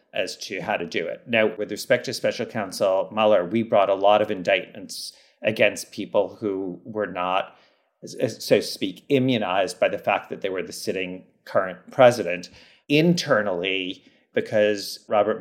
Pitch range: 100-120 Hz